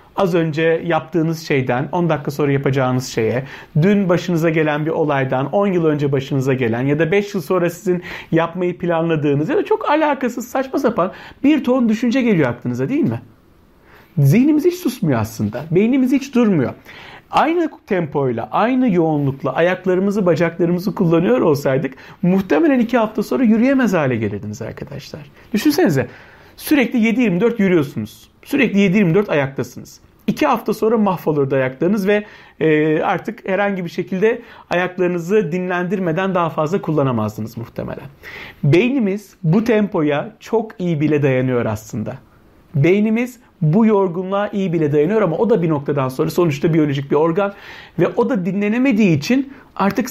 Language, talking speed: Turkish, 140 wpm